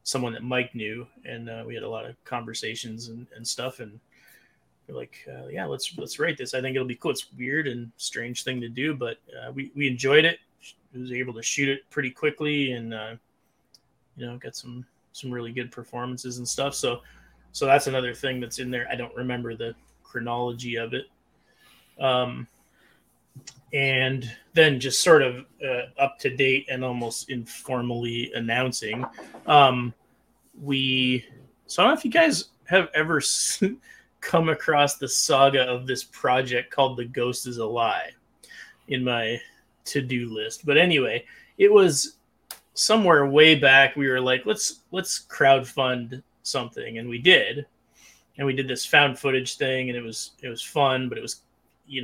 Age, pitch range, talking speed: 20-39, 120-140 Hz, 180 wpm